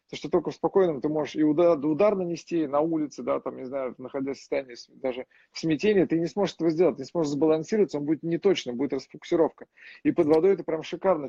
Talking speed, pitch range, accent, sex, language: 225 wpm, 140-175 Hz, native, male, Russian